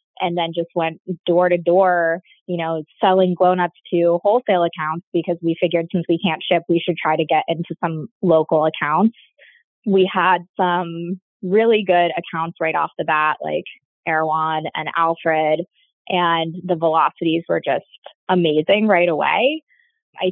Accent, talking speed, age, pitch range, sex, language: American, 155 wpm, 20-39, 165-195 Hz, female, English